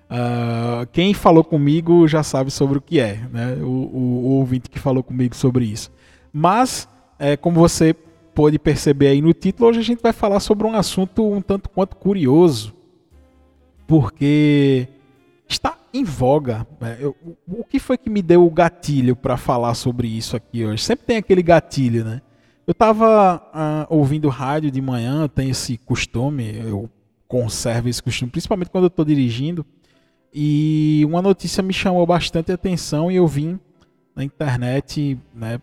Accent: Brazilian